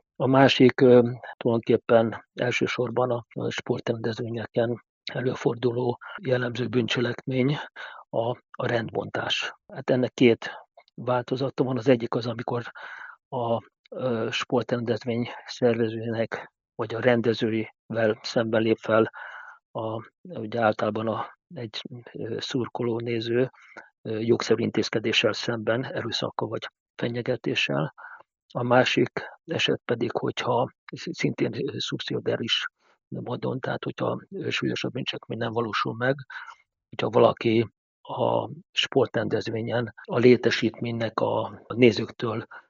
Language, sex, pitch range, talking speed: Hungarian, male, 115-125 Hz, 95 wpm